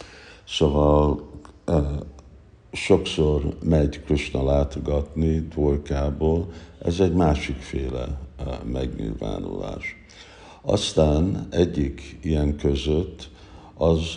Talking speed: 65 wpm